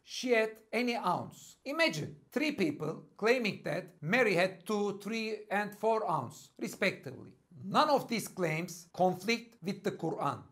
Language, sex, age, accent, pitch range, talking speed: English, male, 60-79, Turkish, 170-230 Hz, 145 wpm